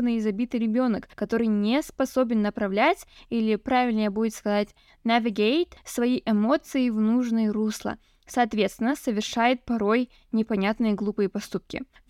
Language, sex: Russian, female